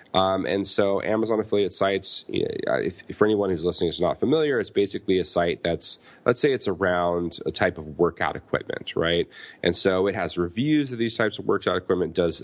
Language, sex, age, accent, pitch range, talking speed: English, male, 30-49, American, 90-105 Hz, 195 wpm